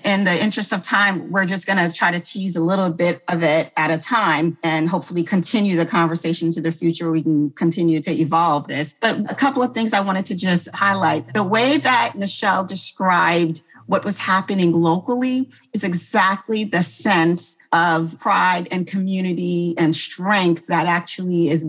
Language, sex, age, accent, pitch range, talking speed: English, female, 40-59, American, 165-200 Hz, 185 wpm